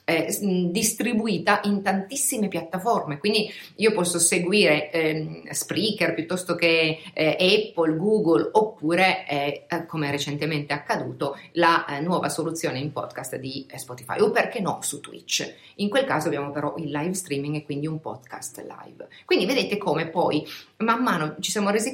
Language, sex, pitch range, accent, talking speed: Italian, female, 160-210 Hz, native, 155 wpm